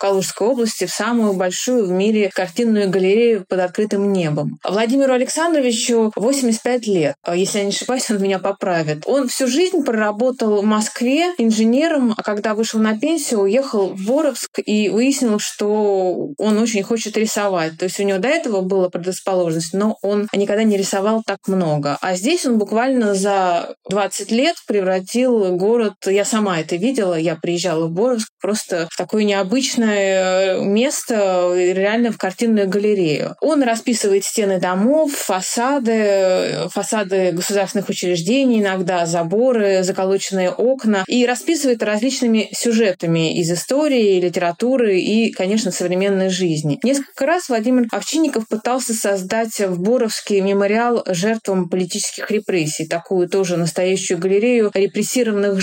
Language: English